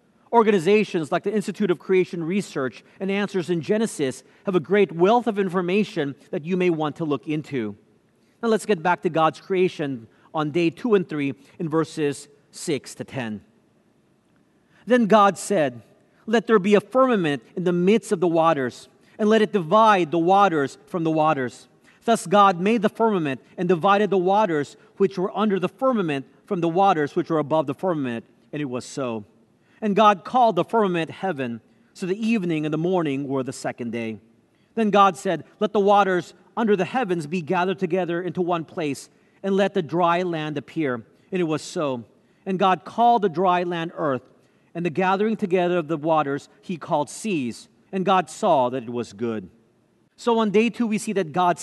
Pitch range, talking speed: 150-205 Hz, 190 wpm